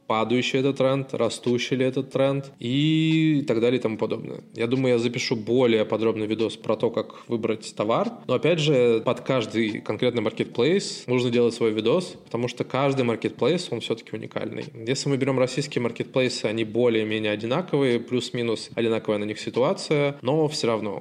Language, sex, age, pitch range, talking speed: Russian, male, 20-39, 110-135 Hz, 170 wpm